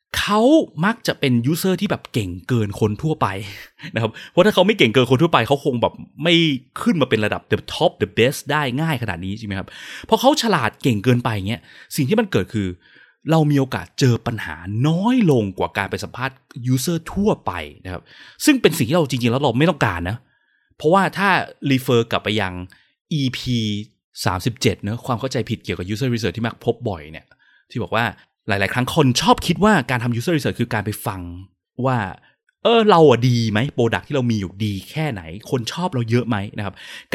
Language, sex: Thai, male